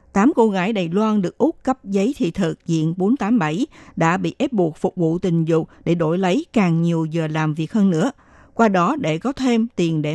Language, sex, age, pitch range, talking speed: Vietnamese, female, 60-79, 175-235 Hz, 225 wpm